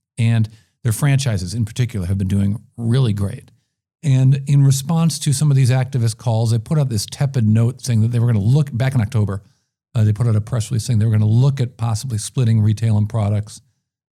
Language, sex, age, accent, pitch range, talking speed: English, male, 50-69, American, 110-135 Hz, 230 wpm